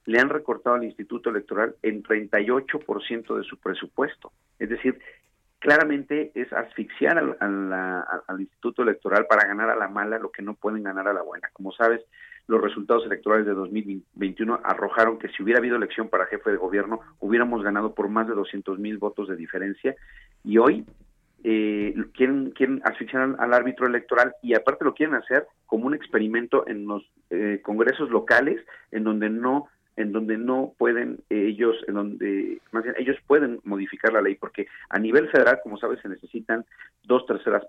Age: 40-59